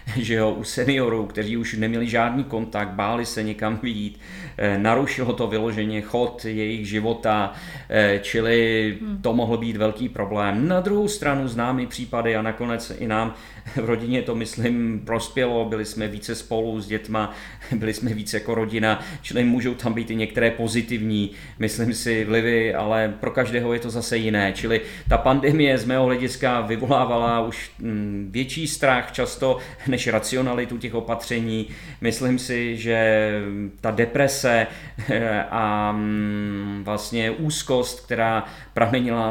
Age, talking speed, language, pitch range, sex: 40-59, 135 wpm, Czech, 105-120 Hz, male